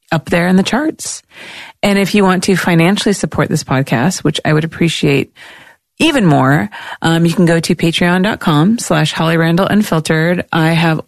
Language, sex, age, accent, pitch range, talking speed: English, female, 30-49, American, 160-200 Hz, 175 wpm